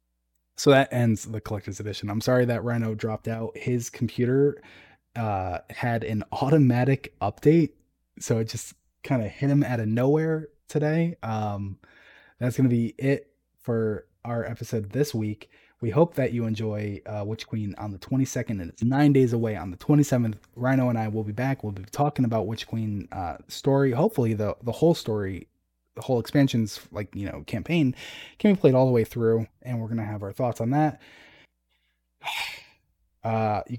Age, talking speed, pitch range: 20-39, 185 wpm, 105-130 Hz